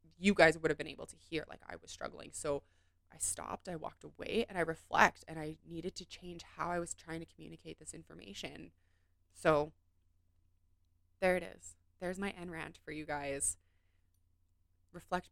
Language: English